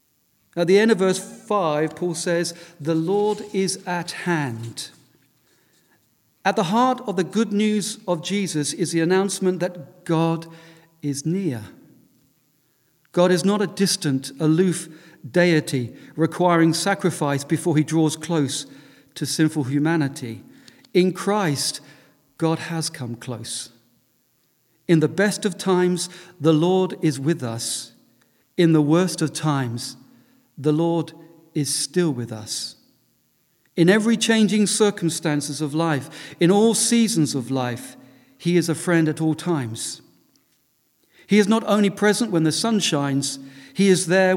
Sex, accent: male, British